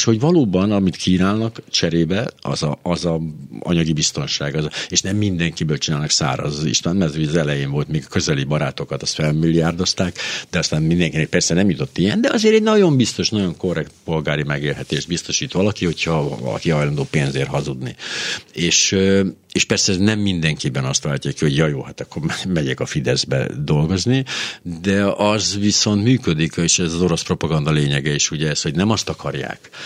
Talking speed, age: 180 wpm, 60-79